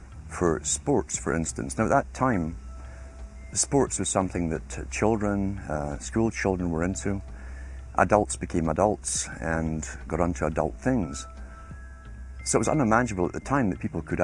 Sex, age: male, 50-69